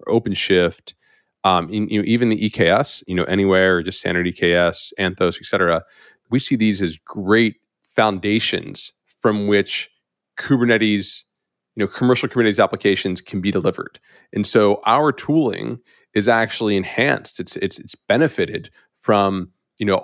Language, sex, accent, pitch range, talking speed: English, male, American, 95-110 Hz, 140 wpm